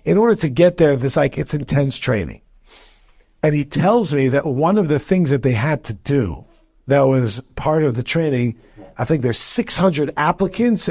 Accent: American